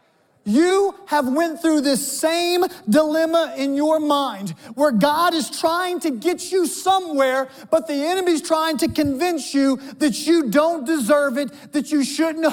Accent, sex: American, male